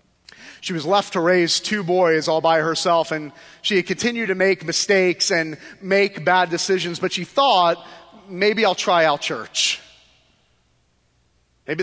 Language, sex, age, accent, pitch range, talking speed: English, male, 30-49, American, 150-190 Hz, 150 wpm